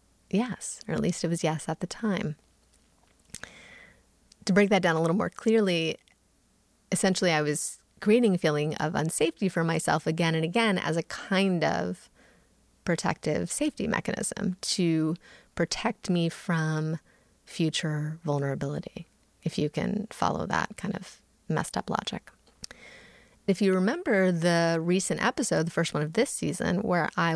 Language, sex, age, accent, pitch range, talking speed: English, female, 30-49, American, 165-195 Hz, 150 wpm